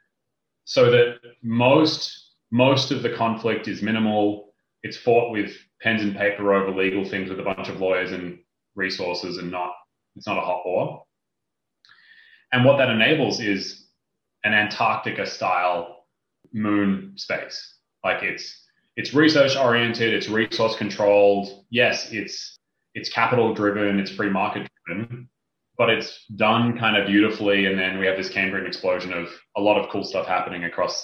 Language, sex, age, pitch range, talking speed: English, male, 20-39, 100-125 Hz, 155 wpm